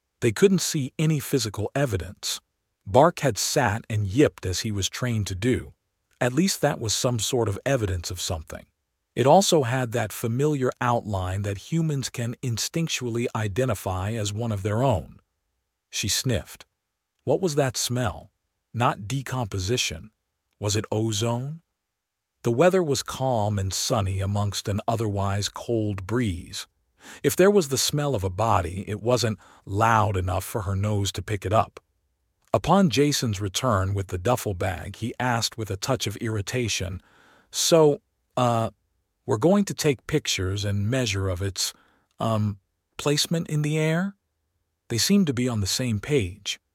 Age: 50-69